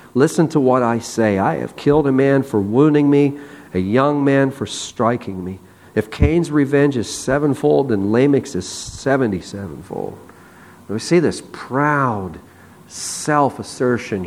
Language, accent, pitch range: English, American, 110-145 Hz